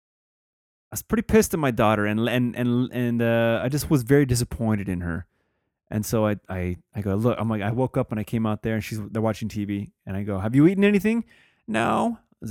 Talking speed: 245 wpm